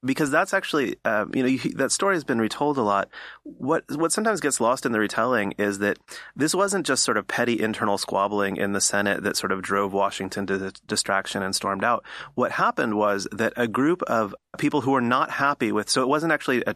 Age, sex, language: 30-49, male, English